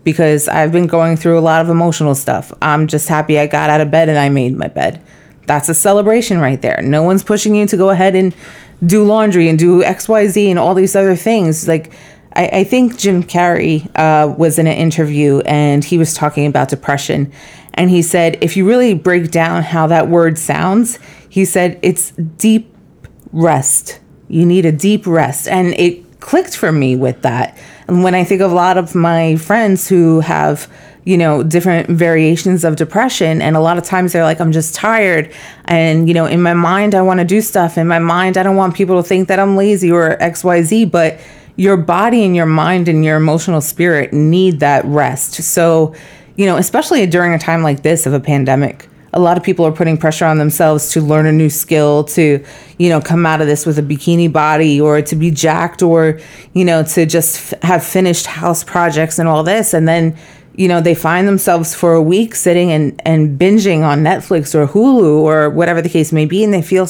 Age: 30-49